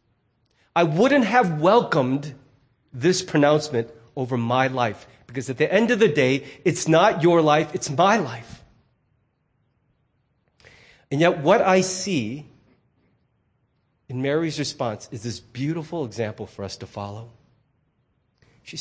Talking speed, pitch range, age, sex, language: 130 wpm, 115-150 Hz, 40-59, male, English